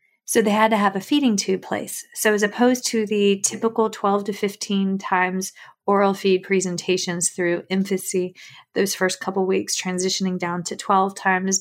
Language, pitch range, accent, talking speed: English, 185-215 Hz, American, 170 wpm